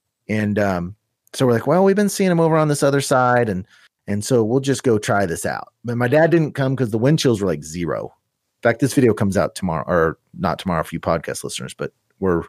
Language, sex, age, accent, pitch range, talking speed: English, male, 30-49, American, 100-135 Hz, 250 wpm